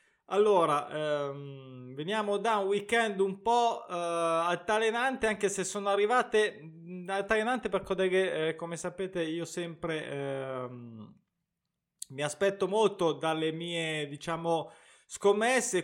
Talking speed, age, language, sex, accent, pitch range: 110 wpm, 20-39, Italian, male, native, 145-195 Hz